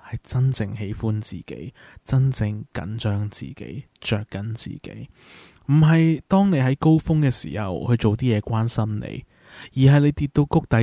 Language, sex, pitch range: Chinese, male, 110-135 Hz